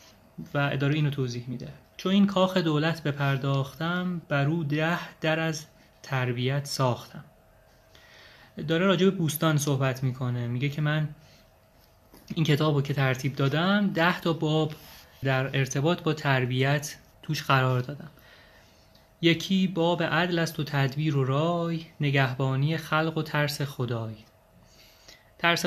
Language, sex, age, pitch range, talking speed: Persian, male, 30-49, 135-160 Hz, 130 wpm